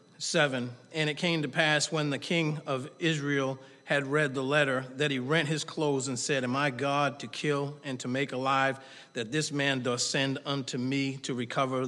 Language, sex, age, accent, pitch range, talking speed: English, male, 40-59, American, 130-170 Hz, 200 wpm